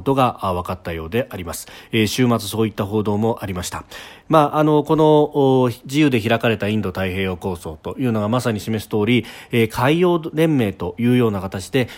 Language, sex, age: Japanese, male, 40-59